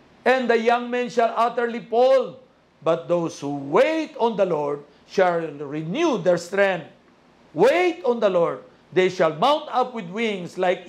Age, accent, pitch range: 50-69, native, 165-230 Hz